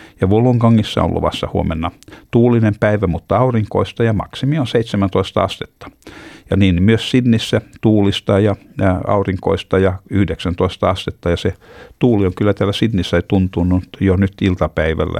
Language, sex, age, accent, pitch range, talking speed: Finnish, male, 60-79, native, 90-110 Hz, 140 wpm